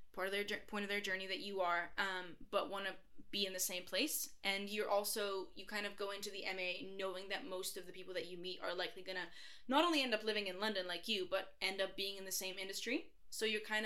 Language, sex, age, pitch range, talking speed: English, female, 10-29, 185-205 Hz, 270 wpm